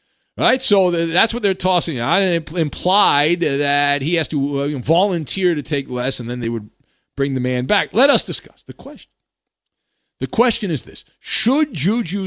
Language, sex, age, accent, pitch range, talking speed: English, male, 50-69, American, 140-230 Hz, 175 wpm